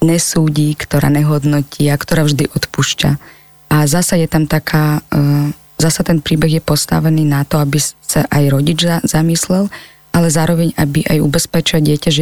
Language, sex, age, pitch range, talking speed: Slovak, female, 20-39, 145-160 Hz, 150 wpm